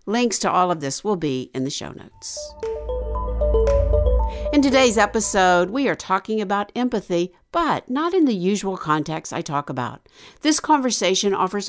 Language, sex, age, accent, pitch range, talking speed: English, female, 60-79, American, 160-230 Hz, 160 wpm